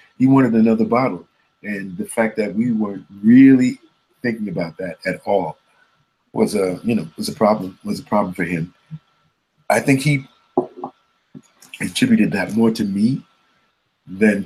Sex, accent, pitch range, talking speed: male, American, 95-125 Hz, 155 wpm